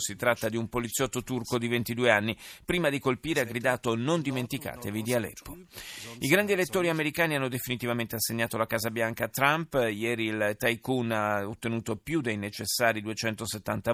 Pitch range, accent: 115-155 Hz, native